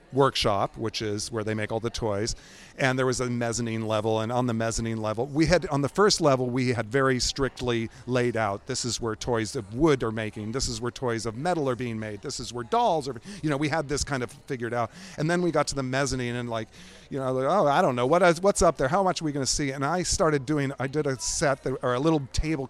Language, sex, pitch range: English, male, 120-155 Hz